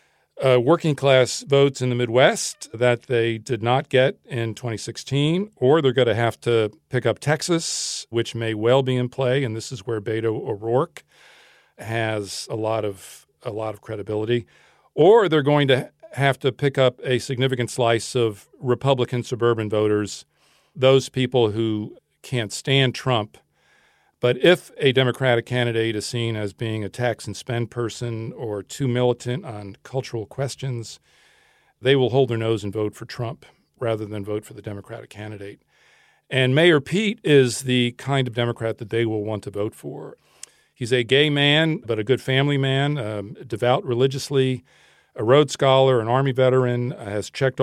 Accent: American